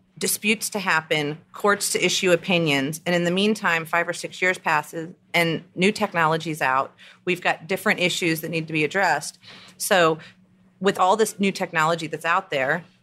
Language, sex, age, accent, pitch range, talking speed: English, female, 40-59, American, 155-185 Hz, 175 wpm